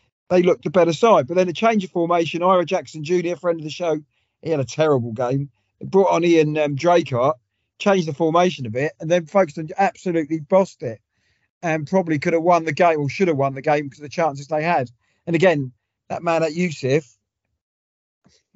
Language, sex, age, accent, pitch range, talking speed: English, male, 40-59, British, 145-180 Hz, 220 wpm